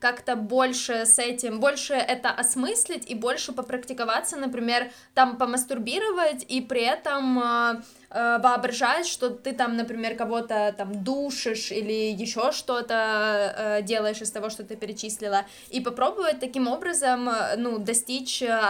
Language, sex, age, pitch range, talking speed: Ukrainian, female, 20-39, 230-265 Hz, 130 wpm